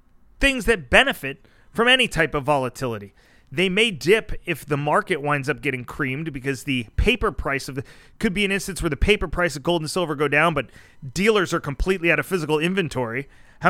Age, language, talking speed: 30-49, English, 200 wpm